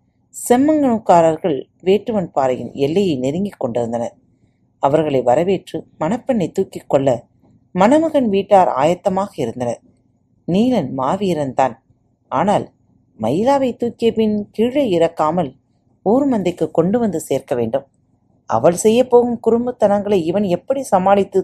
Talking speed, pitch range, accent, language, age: 90 wpm, 130-210 Hz, native, Tamil, 40-59